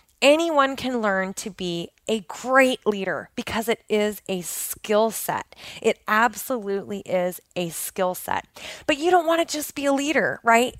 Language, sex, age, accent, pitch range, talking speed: English, female, 20-39, American, 195-260 Hz, 165 wpm